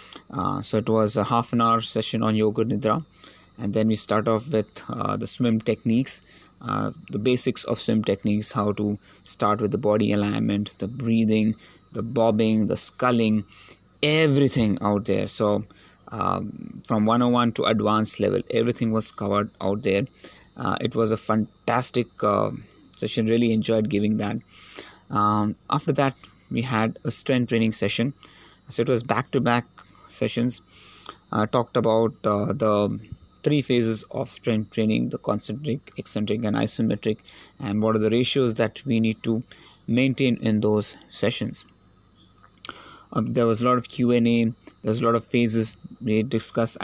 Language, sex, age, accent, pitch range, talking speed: English, male, 20-39, Indian, 105-120 Hz, 160 wpm